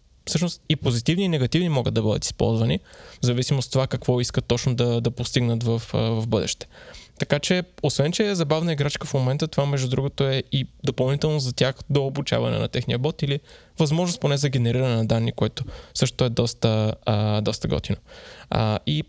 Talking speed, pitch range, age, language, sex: 190 wpm, 125-155 Hz, 20-39, Bulgarian, male